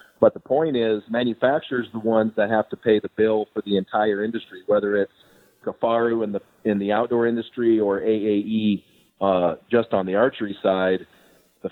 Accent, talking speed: American, 185 wpm